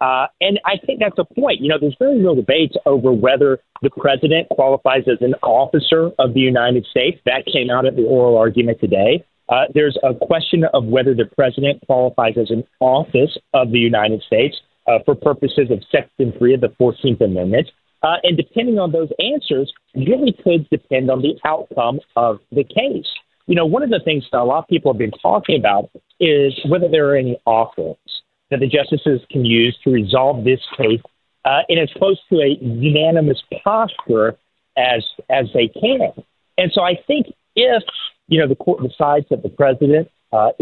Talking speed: 195 wpm